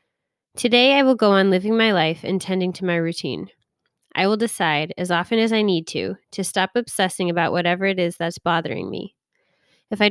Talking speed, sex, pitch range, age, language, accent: 200 wpm, female, 165-195 Hz, 20-39, English, American